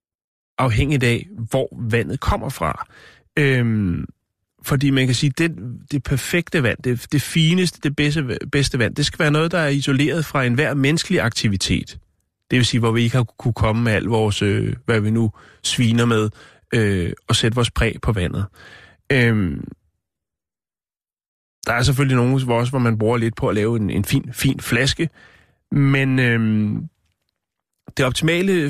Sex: male